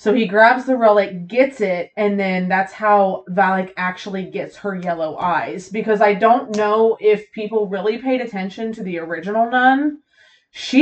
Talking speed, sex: 170 wpm, female